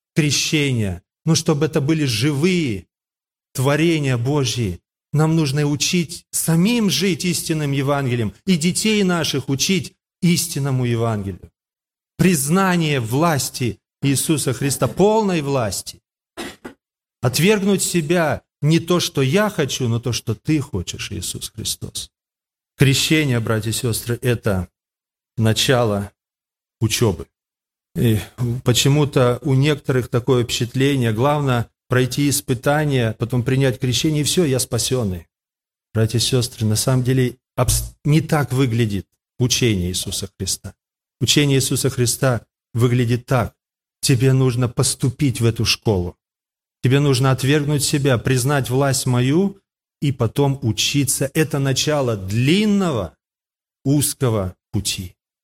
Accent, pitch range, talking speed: native, 115-150 Hz, 110 wpm